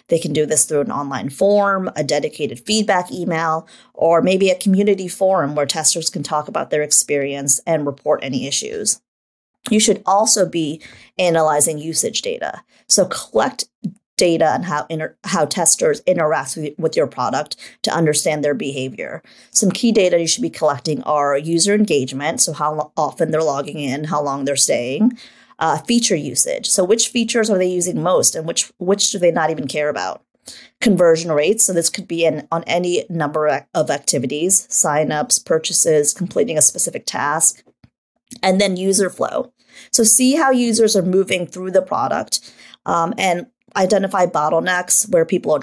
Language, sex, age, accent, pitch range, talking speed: English, female, 30-49, American, 155-205 Hz, 165 wpm